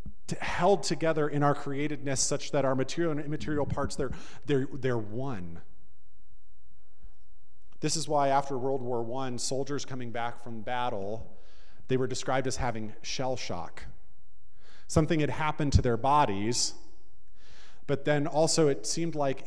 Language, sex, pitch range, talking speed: English, male, 110-135 Hz, 140 wpm